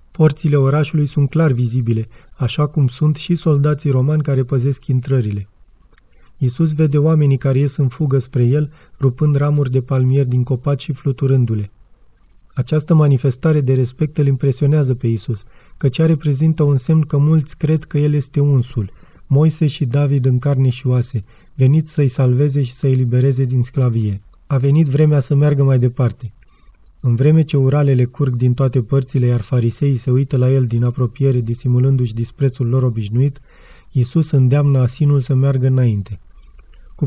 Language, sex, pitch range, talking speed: Romanian, male, 125-145 Hz, 160 wpm